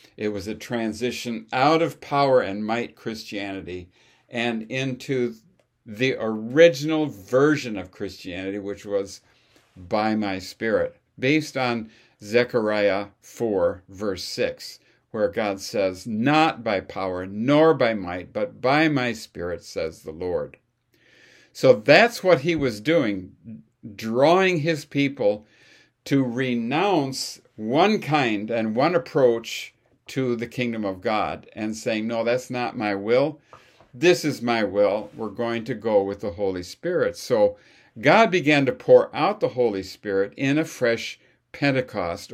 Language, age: English, 60-79